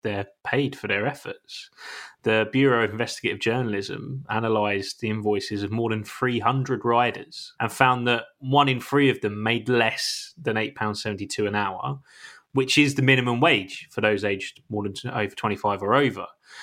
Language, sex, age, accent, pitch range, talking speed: English, male, 20-39, British, 105-130 Hz, 165 wpm